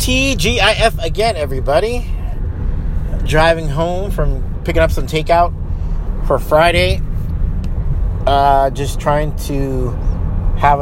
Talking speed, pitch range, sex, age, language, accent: 95 wpm, 85-140 Hz, male, 30-49, English, American